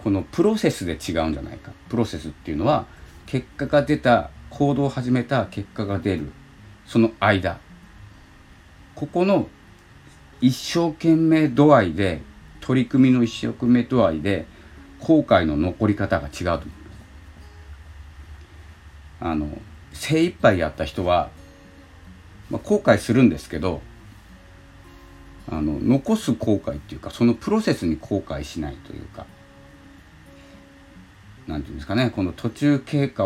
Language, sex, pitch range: Japanese, male, 80-120 Hz